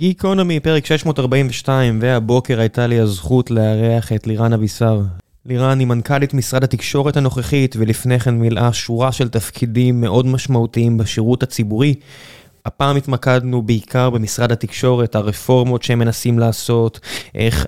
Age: 20-39